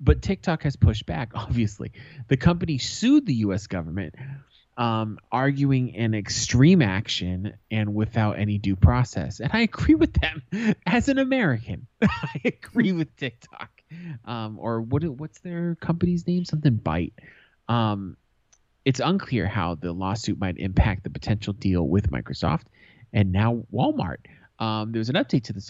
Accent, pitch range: American, 100-130 Hz